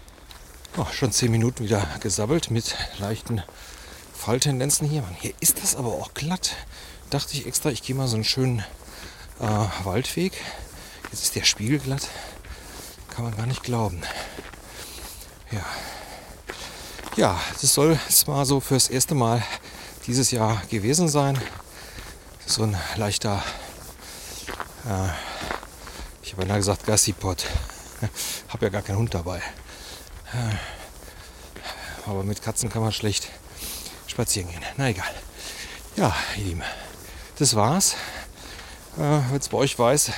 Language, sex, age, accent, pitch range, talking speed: German, male, 40-59, German, 85-125 Hz, 130 wpm